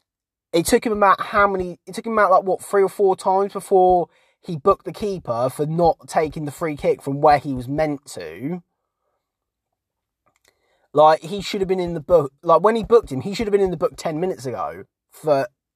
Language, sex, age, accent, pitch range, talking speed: English, male, 20-39, British, 160-210 Hz, 215 wpm